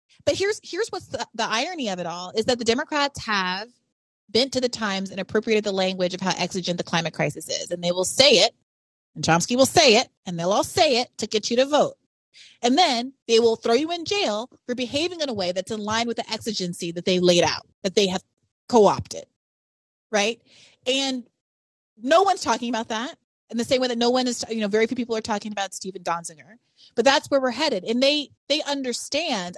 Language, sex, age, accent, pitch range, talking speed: English, female, 30-49, American, 185-245 Hz, 225 wpm